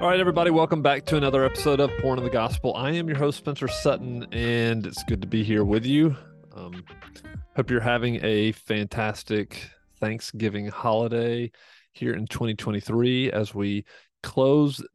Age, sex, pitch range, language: 40-59, male, 105-130 Hz, English